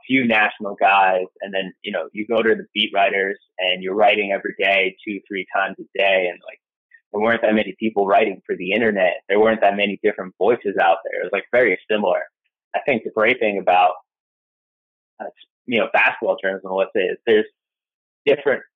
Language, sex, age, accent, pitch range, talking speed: English, male, 20-39, American, 105-135 Hz, 205 wpm